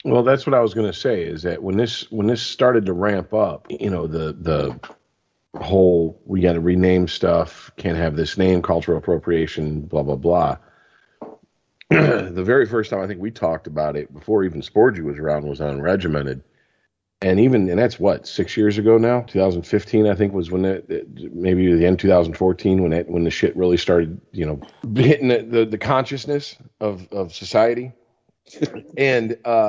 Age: 40-59